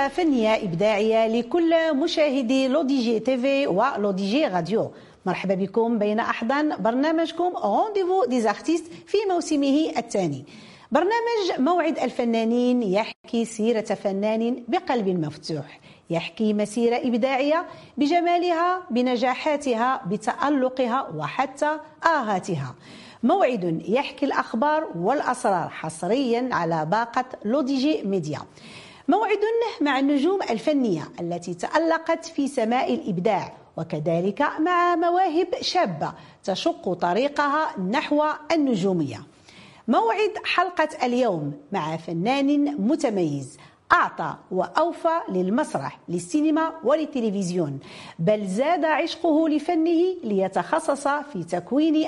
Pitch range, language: 210-315 Hz, French